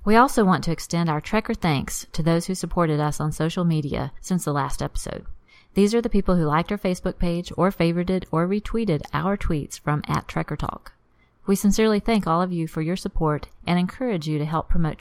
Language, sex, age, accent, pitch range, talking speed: English, female, 40-59, American, 155-190 Hz, 210 wpm